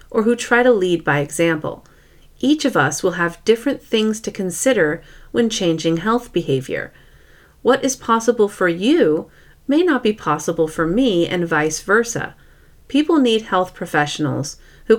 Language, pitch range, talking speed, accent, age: English, 165-230 Hz, 155 wpm, American, 40-59